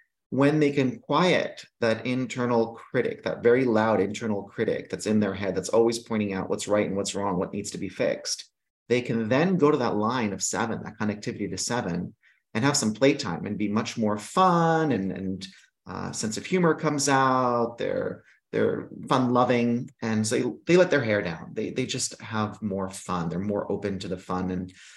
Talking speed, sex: 205 wpm, male